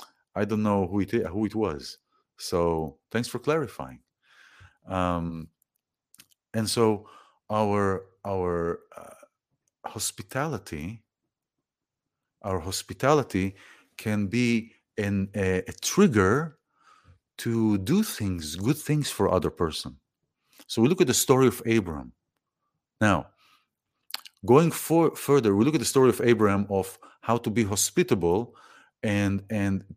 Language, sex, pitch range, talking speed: English, male, 95-125 Hz, 125 wpm